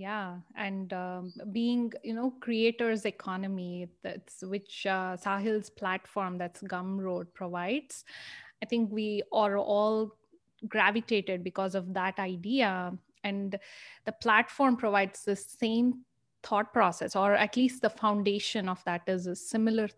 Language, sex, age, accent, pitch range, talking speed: English, female, 20-39, Indian, 200-250 Hz, 130 wpm